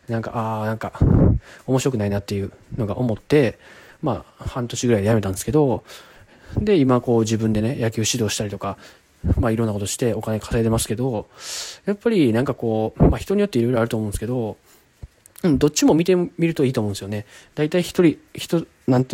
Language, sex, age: Japanese, male, 20-39